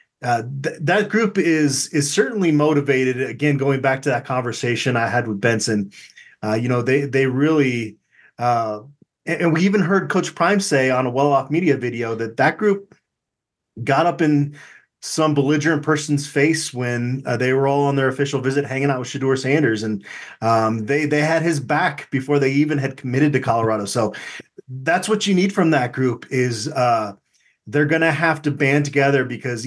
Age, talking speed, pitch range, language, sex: 30-49, 190 wpm, 120-150 Hz, English, male